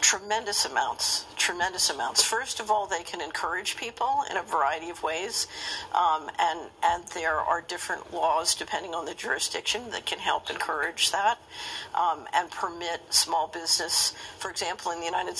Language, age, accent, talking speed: English, 50-69, American, 165 wpm